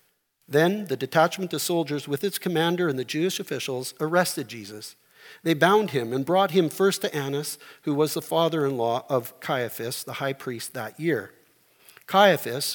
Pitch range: 145-205 Hz